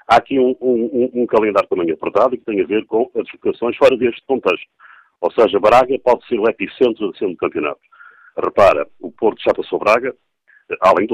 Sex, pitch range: male, 340-445 Hz